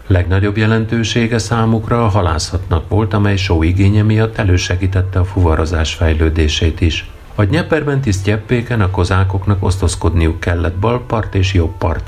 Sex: male